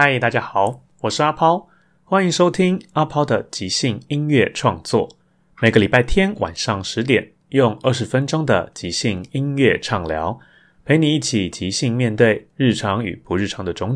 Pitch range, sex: 95-130 Hz, male